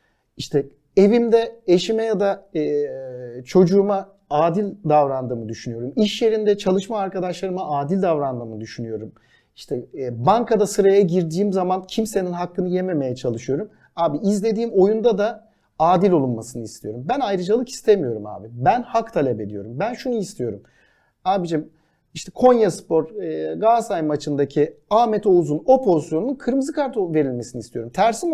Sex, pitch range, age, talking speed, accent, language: male, 140-225 Hz, 50-69, 125 wpm, native, Turkish